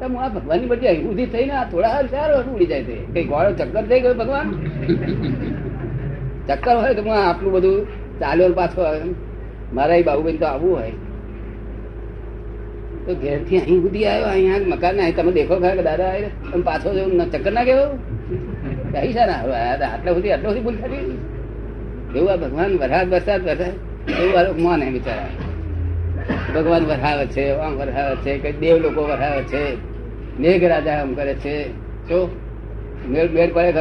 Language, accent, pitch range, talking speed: Gujarati, native, 125-185 Hz, 100 wpm